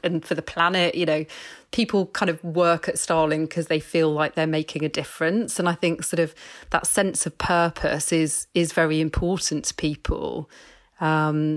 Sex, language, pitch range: female, English, 155-175 Hz